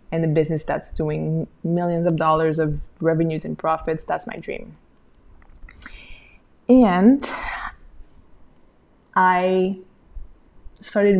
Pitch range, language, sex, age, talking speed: 160-185 Hz, English, female, 20-39, 95 wpm